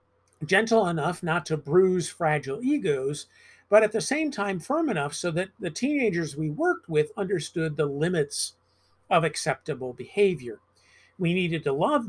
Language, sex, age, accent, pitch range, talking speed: English, male, 50-69, American, 150-215 Hz, 155 wpm